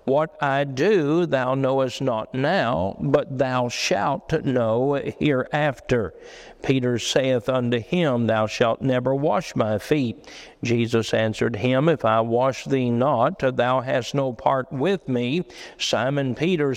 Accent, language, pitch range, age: American, English, 125-150 Hz, 50-69